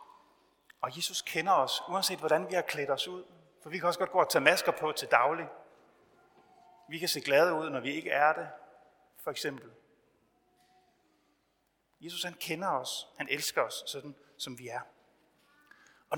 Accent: native